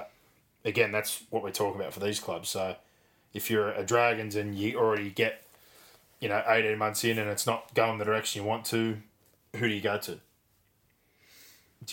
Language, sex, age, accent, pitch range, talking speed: English, male, 20-39, Australian, 100-110 Hz, 195 wpm